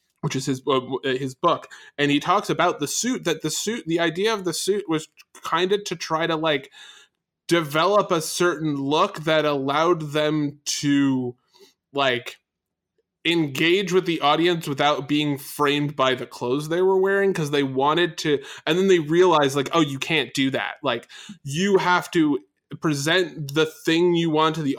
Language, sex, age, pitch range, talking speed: English, male, 20-39, 140-180 Hz, 180 wpm